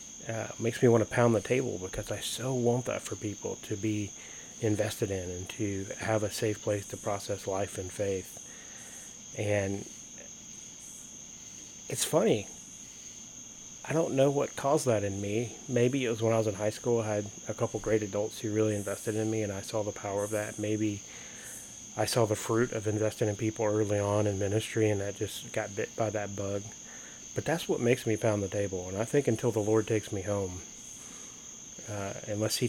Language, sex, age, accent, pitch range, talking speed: English, male, 30-49, American, 100-115 Hz, 200 wpm